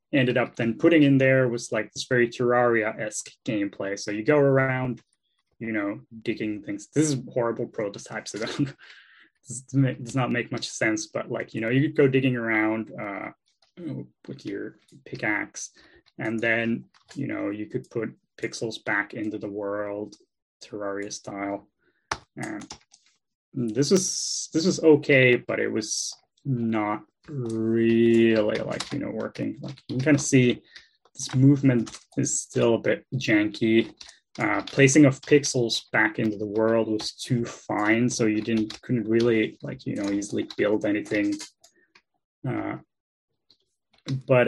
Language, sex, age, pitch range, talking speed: English, male, 10-29, 110-135 Hz, 145 wpm